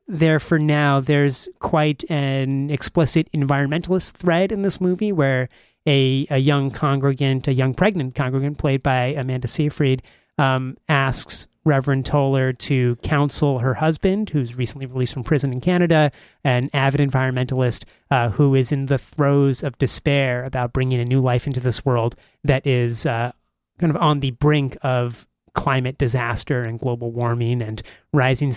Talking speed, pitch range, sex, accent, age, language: 160 wpm, 125-150 Hz, male, American, 30-49, English